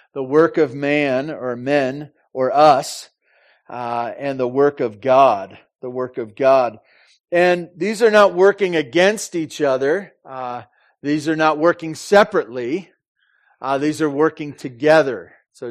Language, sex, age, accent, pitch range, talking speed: English, male, 40-59, American, 135-165 Hz, 145 wpm